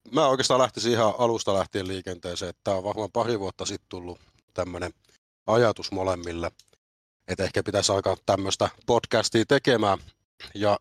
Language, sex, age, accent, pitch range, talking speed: Finnish, male, 30-49, native, 90-110 Hz, 140 wpm